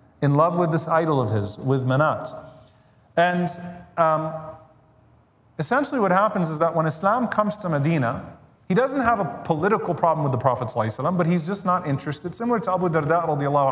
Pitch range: 125-170 Hz